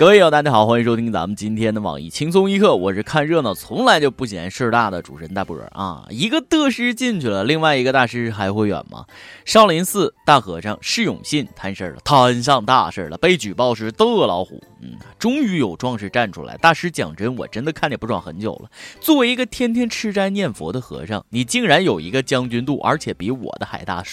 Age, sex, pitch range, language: 20-39, male, 100-150 Hz, Chinese